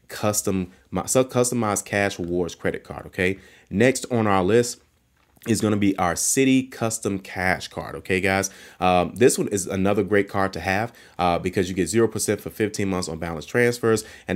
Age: 30-49